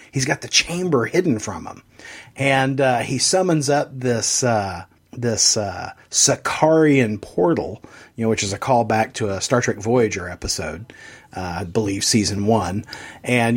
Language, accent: English, American